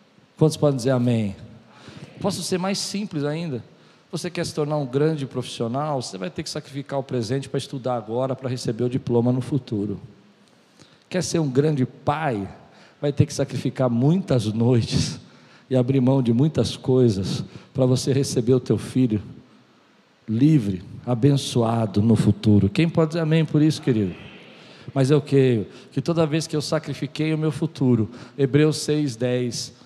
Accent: Brazilian